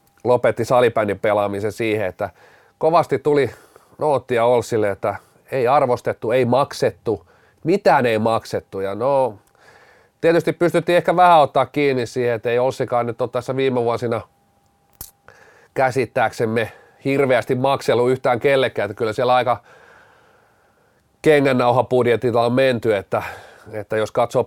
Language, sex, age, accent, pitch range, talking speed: Finnish, male, 30-49, native, 120-155 Hz, 120 wpm